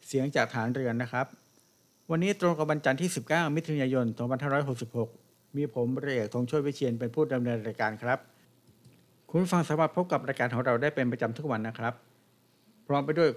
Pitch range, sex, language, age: 120-150 Hz, male, Thai, 60-79